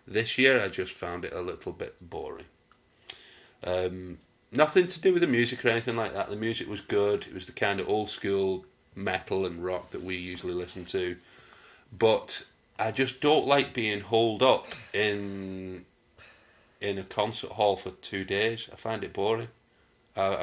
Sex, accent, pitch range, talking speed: male, British, 95-115 Hz, 180 wpm